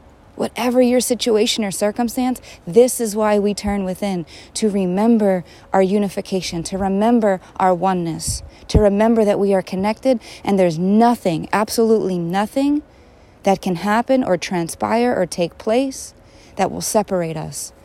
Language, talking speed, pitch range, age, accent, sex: English, 140 wpm, 155-200 Hz, 30-49, American, female